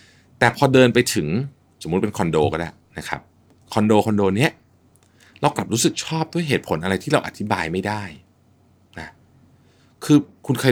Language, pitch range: Thai, 90-125 Hz